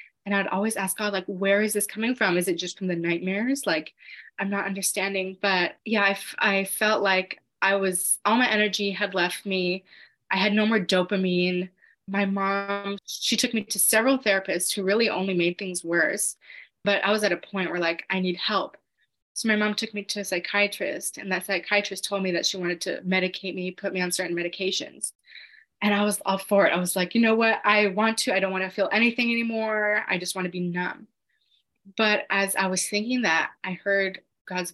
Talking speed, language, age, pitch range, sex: 220 wpm, English, 20-39, 185-210 Hz, female